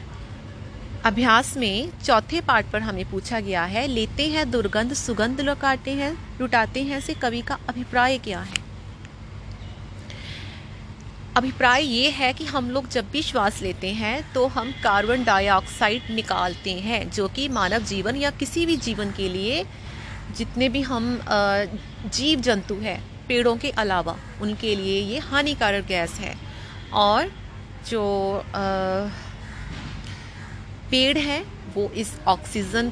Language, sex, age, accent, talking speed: Hindi, female, 30-49, native, 135 wpm